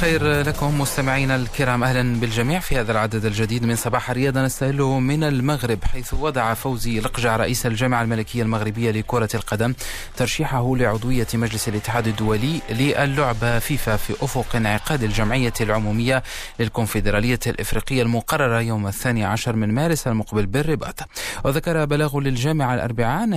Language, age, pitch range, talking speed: Arabic, 30-49, 105-130 Hz, 135 wpm